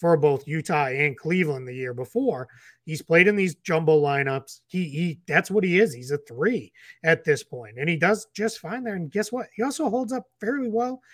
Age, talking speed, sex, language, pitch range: 30-49, 220 wpm, male, English, 140-180 Hz